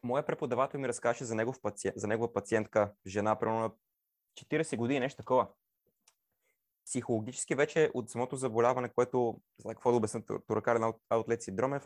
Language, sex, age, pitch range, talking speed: Bulgarian, male, 20-39, 110-140 Hz, 155 wpm